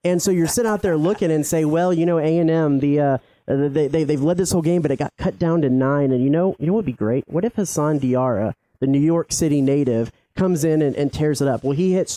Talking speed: 280 wpm